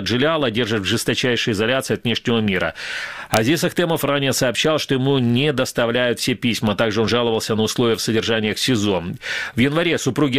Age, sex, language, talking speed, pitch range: 40-59, male, Russian, 170 wpm, 110-135 Hz